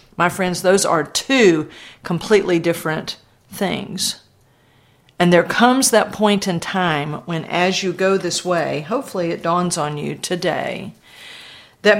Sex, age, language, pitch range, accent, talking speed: female, 50-69, English, 155-195 Hz, American, 140 wpm